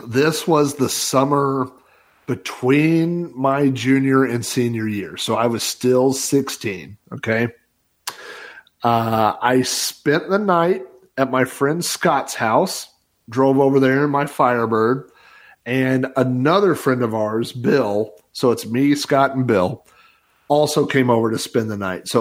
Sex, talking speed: male, 140 wpm